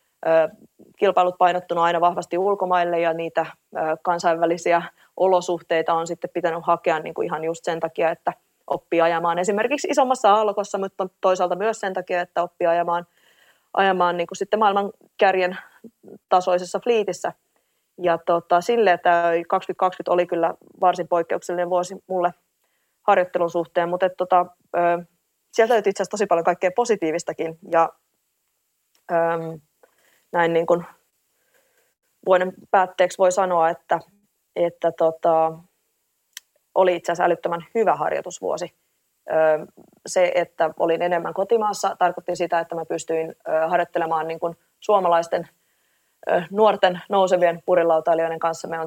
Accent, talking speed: native, 125 wpm